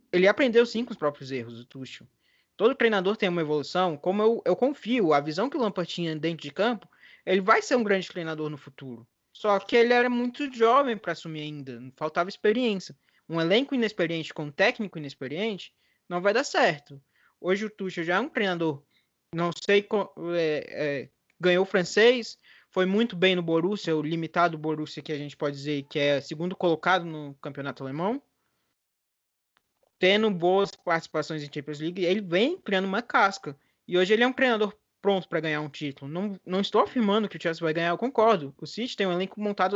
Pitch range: 155-210 Hz